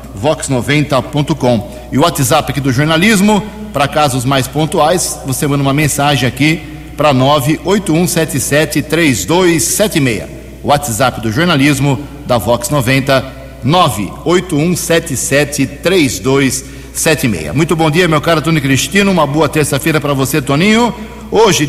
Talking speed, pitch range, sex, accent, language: 105 wpm, 125-155 Hz, male, Brazilian, Portuguese